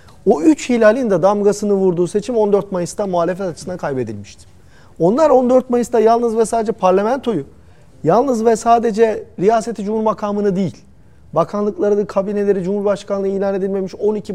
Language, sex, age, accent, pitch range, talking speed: Turkish, male, 40-59, native, 175-220 Hz, 130 wpm